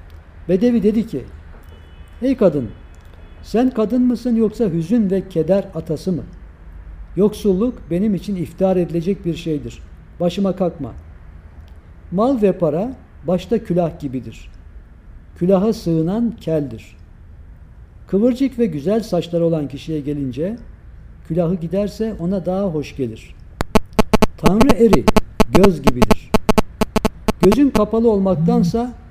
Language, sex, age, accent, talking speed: Turkish, male, 60-79, native, 105 wpm